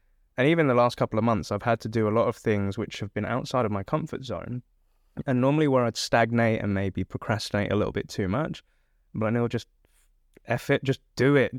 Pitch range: 105-130 Hz